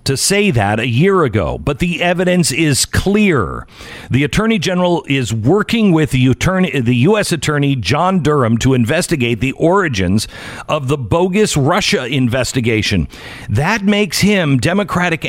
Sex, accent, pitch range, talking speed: male, American, 130-185 Hz, 145 wpm